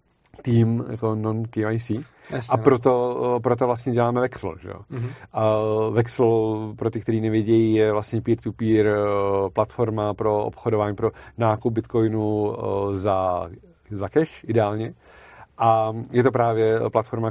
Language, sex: Czech, male